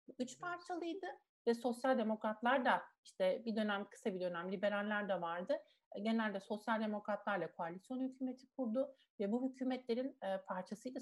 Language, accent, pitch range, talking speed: Turkish, native, 205-270 Hz, 140 wpm